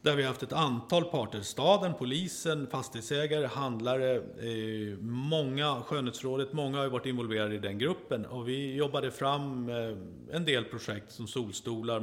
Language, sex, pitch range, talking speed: Swedish, male, 110-135 Hz, 160 wpm